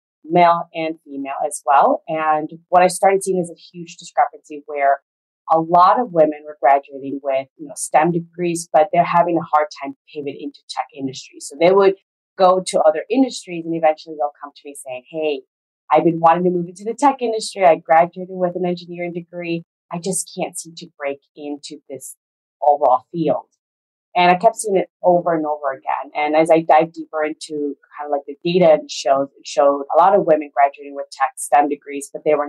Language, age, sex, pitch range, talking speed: English, 30-49, female, 145-180 Hz, 205 wpm